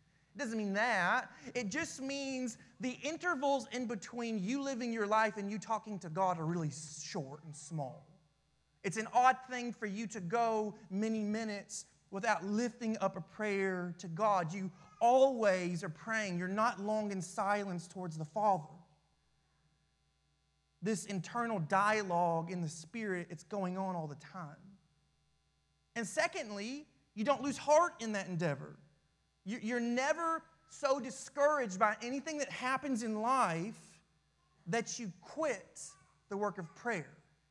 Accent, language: American, English